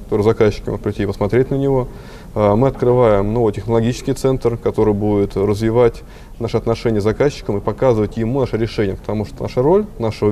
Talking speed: 165 wpm